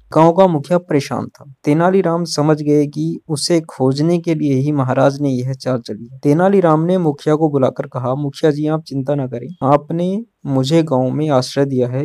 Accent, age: native, 20-39